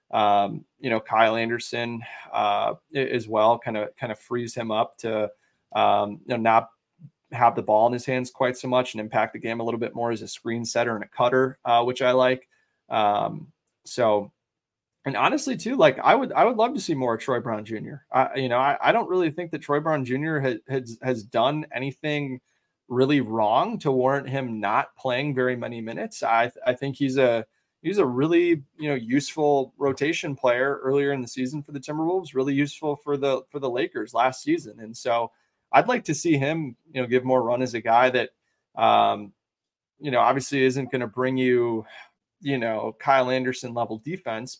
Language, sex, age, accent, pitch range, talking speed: English, male, 20-39, American, 115-140 Hz, 200 wpm